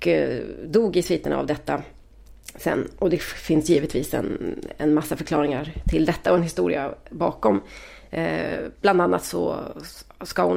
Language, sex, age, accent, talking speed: Swedish, female, 30-49, native, 150 wpm